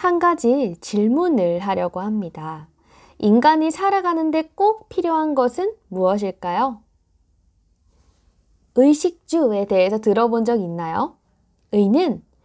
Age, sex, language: 20-39, female, Korean